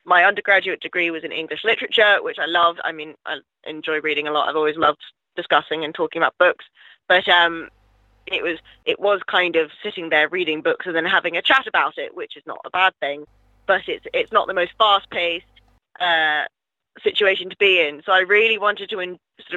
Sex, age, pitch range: female, 10-29, 155-200 Hz